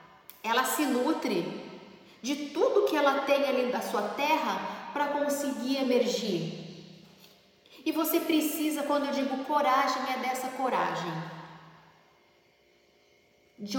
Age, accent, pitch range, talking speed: 40-59, Brazilian, 210-285 Hz, 115 wpm